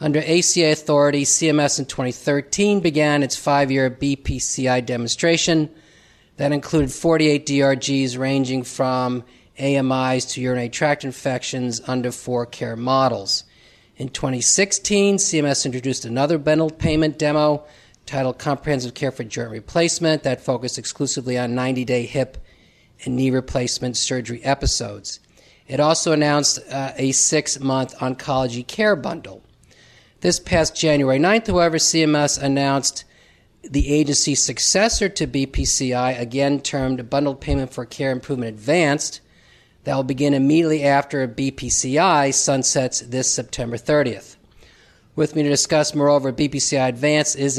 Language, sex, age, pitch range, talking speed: English, male, 40-59, 125-150 Hz, 125 wpm